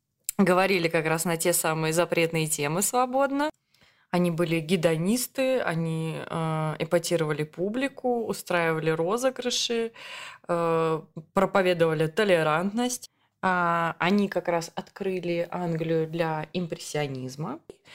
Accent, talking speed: native, 85 wpm